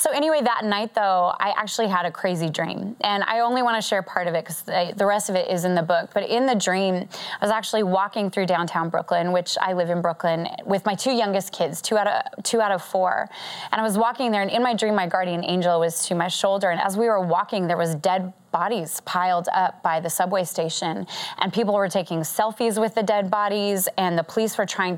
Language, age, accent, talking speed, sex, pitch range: English, 20-39, American, 245 wpm, female, 175-215 Hz